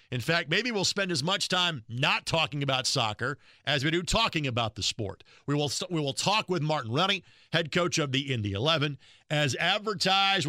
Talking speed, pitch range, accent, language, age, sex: 200 wpm, 130-170 Hz, American, English, 50-69, male